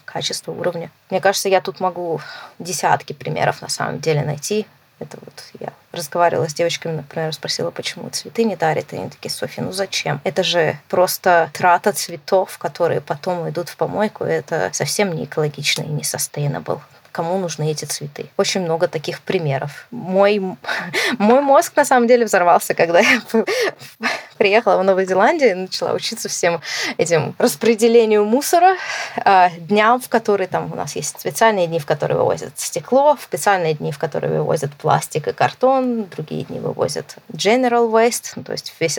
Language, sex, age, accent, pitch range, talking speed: Russian, female, 20-39, native, 165-225 Hz, 160 wpm